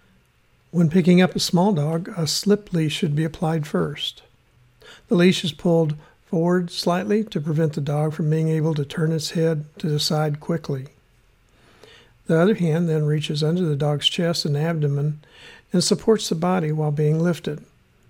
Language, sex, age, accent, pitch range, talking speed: English, male, 60-79, American, 150-180 Hz, 170 wpm